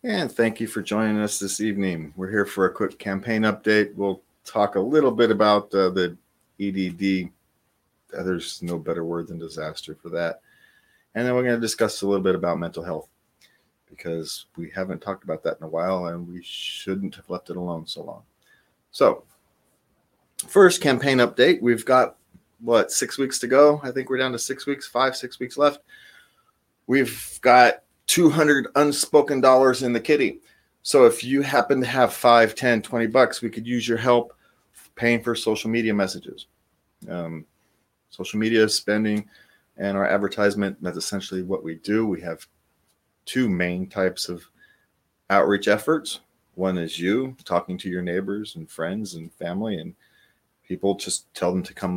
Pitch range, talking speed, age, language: 95-125 Hz, 175 wpm, 40-59, English